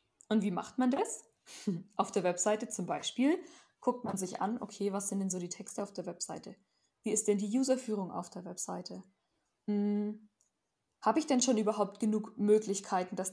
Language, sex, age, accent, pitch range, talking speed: German, female, 10-29, German, 195-230 Hz, 185 wpm